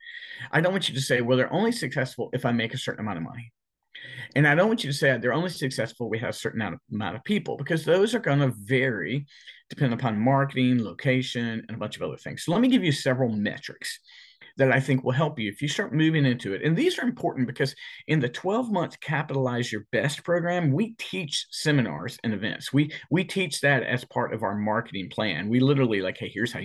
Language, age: English, 40-59